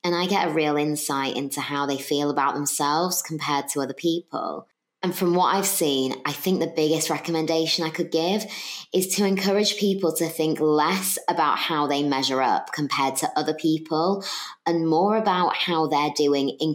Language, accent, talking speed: English, British, 185 wpm